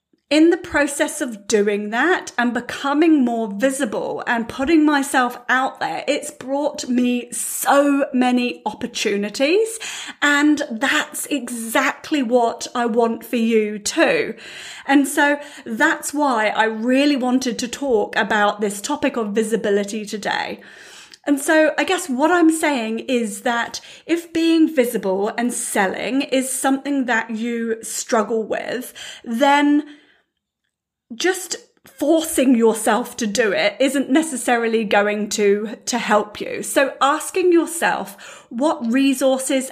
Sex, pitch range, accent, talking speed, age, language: female, 230-290 Hz, British, 125 wpm, 30-49, English